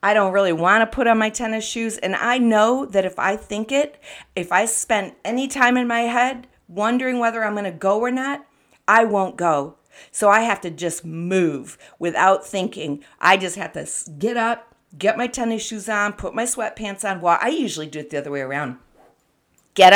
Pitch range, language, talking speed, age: 180-230 Hz, English, 210 wpm, 50-69